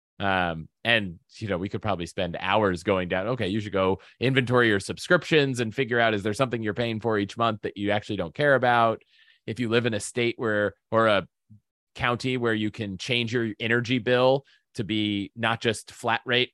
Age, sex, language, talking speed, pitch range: 30-49, male, English, 210 wpm, 100-120 Hz